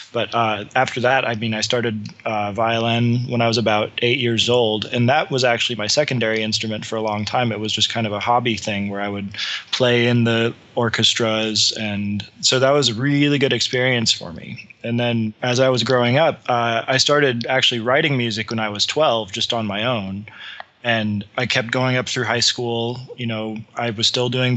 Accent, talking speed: American, 215 wpm